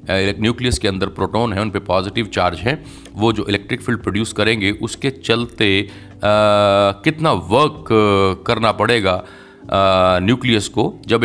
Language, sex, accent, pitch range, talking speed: Hindi, male, native, 95-125 Hz, 140 wpm